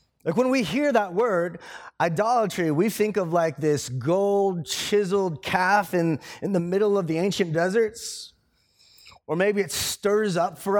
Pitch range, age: 155-205 Hz, 30-49